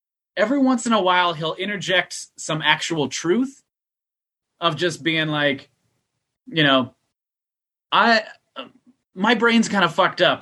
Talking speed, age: 130 wpm, 30-49